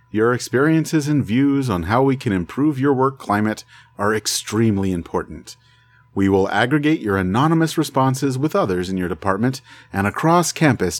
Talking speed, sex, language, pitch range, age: 160 wpm, male, English, 100-135 Hz, 40-59